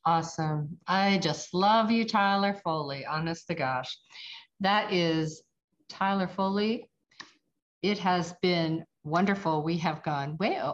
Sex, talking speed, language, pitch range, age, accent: female, 125 wpm, English, 155-190 Hz, 50-69, American